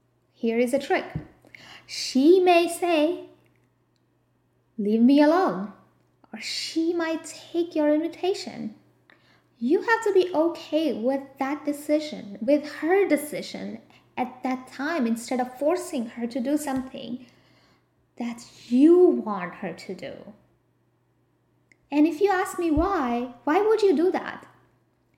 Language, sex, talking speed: English, female, 130 wpm